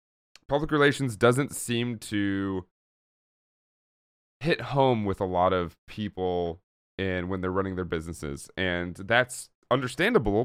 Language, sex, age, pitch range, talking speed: English, male, 30-49, 90-130 Hz, 115 wpm